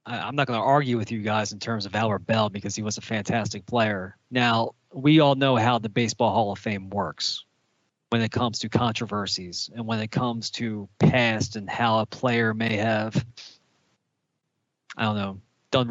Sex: male